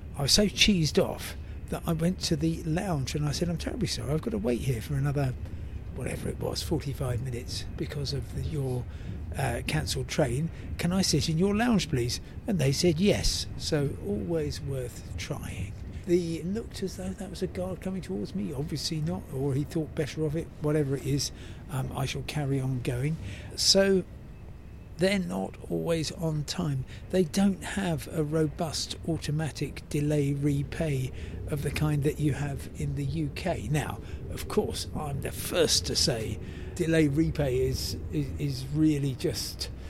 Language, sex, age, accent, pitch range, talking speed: English, male, 50-69, British, 120-160 Hz, 175 wpm